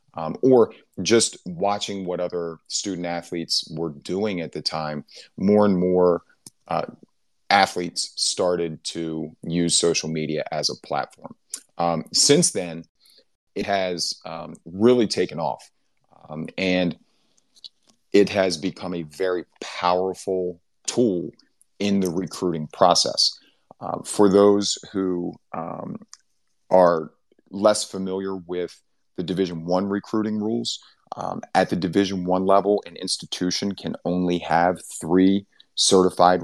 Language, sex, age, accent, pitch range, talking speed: English, male, 30-49, American, 85-95 Hz, 125 wpm